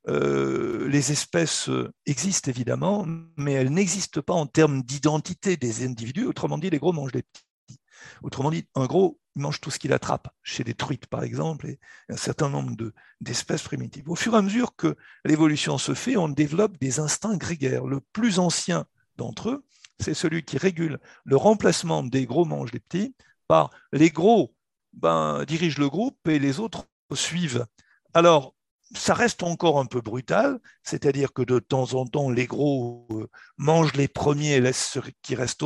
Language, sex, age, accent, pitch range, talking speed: French, male, 60-79, French, 135-180 Hz, 175 wpm